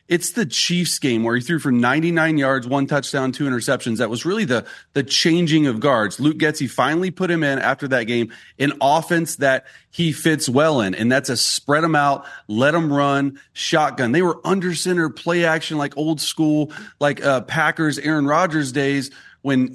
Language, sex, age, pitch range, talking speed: English, male, 30-49, 130-165 Hz, 195 wpm